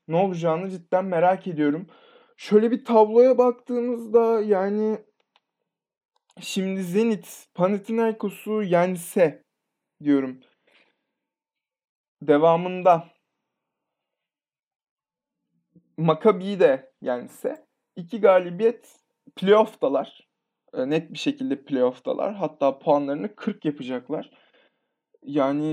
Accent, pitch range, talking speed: native, 145-225 Hz, 70 wpm